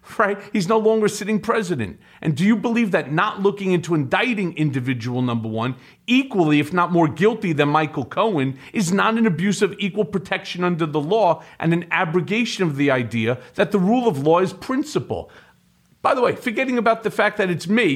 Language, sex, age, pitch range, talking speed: English, male, 40-59, 165-230 Hz, 195 wpm